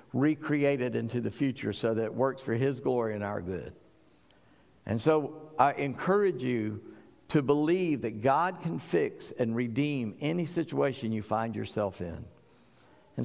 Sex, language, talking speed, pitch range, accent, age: male, English, 155 wpm, 120-155 Hz, American, 50-69